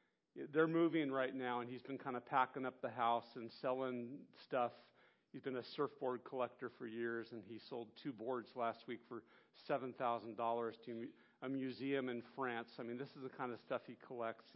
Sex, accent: male, American